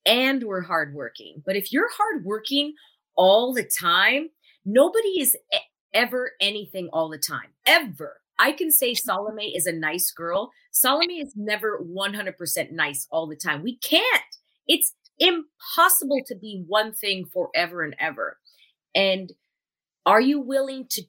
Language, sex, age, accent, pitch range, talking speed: English, female, 30-49, American, 165-265 Hz, 140 wpm